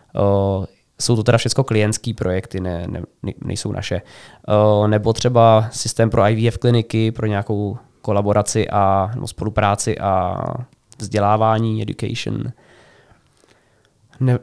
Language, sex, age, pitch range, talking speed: Czech, male, 20-39, 105-120 Hz, 110 wpm